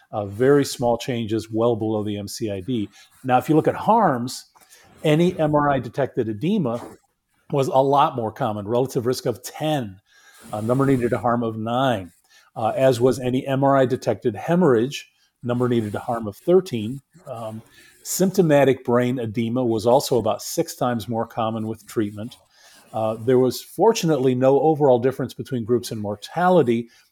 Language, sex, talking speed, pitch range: English, male, 155 wpm, 110-135 Hz